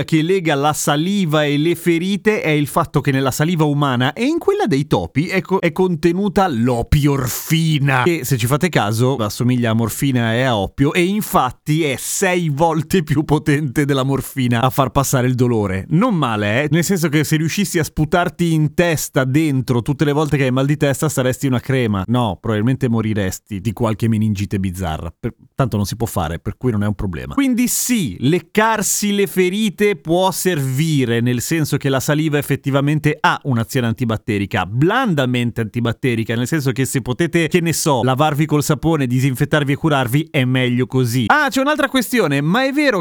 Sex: male